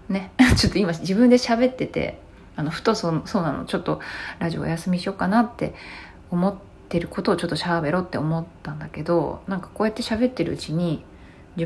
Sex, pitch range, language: female, 155-205 Hz, Japanese